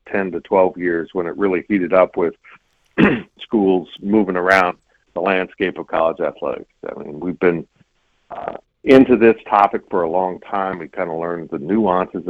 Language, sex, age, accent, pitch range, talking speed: English, male, 60-79, American, 90-115 Hz, 175 wpm